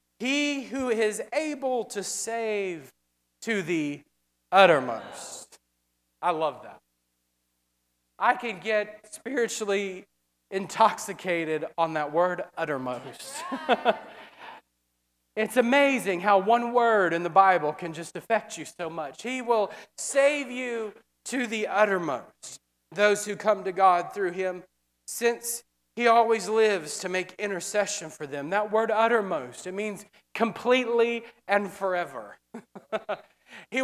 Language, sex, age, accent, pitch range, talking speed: English, male, 30-49, American, 190-255 Hz, 120 wpm